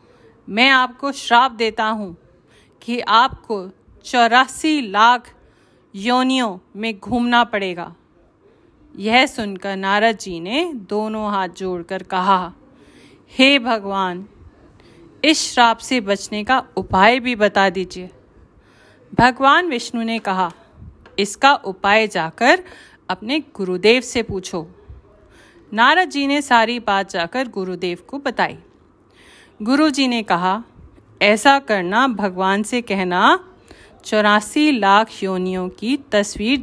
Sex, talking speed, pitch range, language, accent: female, 110 wpm, 195-265 Hz, Hindi, native